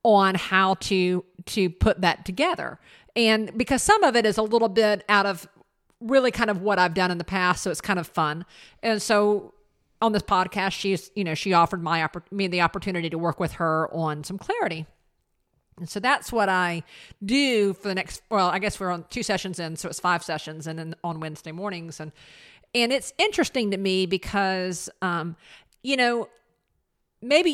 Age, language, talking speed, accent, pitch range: 50-69, English, 195 wpm, American, 170-215 Hz